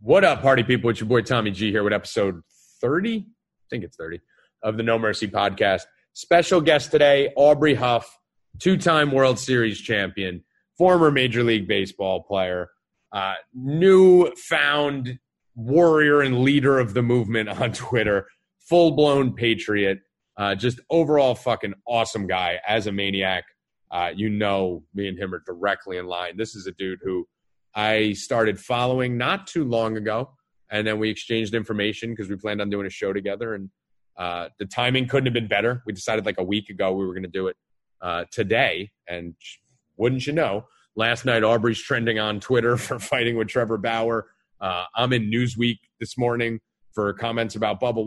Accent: American